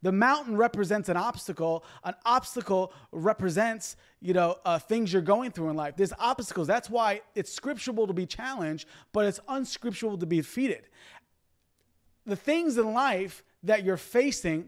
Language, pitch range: English, 180-245 Hz